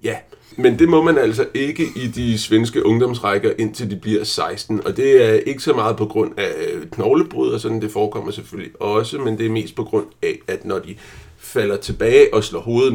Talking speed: 215 wpm